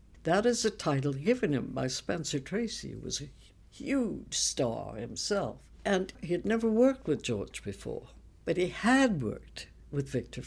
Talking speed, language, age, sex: 165 wpm, English, 60-79, female